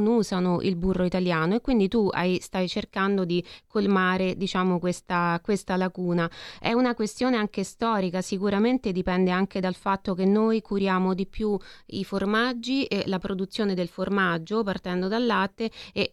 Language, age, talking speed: Italian, 20-39, 155 wpm